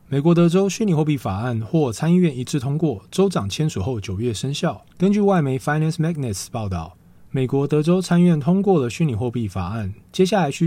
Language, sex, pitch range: Chinese, male, 115-175 Hz